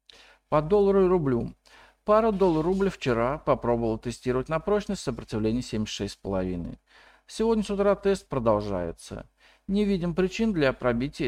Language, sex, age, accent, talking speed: Russian, male, 50-69, native, 130 wpm